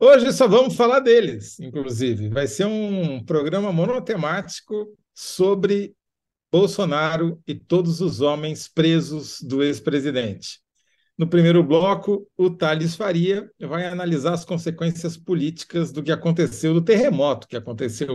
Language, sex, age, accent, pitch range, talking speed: Portuguese, male, 50-69, Brazilian, 130-170 Hz, 125 wpm